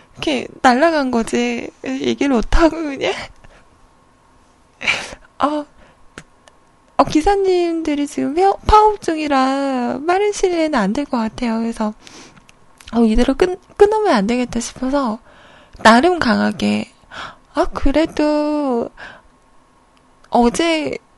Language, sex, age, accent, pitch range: Korean, female, 20-39, native, 245-345 Hz